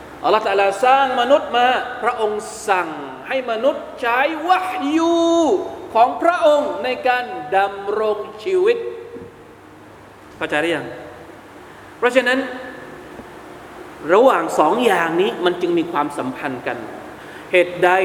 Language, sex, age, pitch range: Thai, male, 20-39, 210-290 Hz